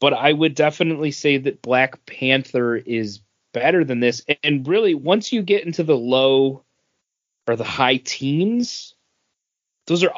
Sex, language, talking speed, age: male, English, 155 wpm, 30-49